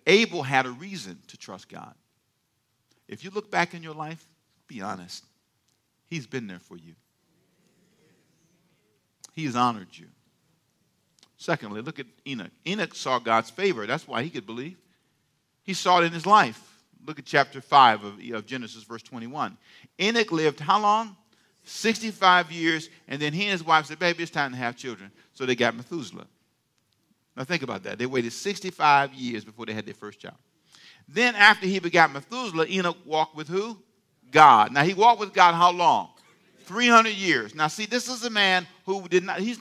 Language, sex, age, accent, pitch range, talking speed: English, male, 50-69, American, 155-210 Hz, 180 wpm